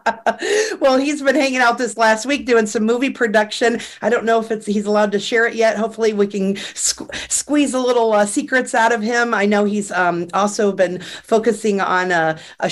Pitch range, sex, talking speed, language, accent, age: 195-230 Hz, female, 205 wpm, English, American, 40-59